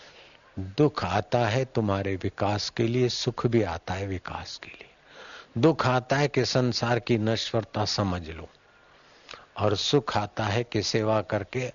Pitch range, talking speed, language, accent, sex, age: 95-120 Hz, 155 wpm, Hindi, native, male, 50-69